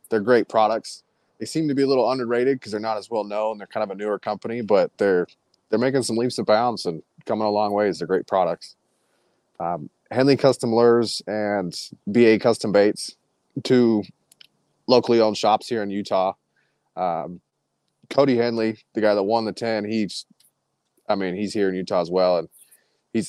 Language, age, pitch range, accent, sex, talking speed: English, 30-49, 95-110 Hz, American, male, 190 wpm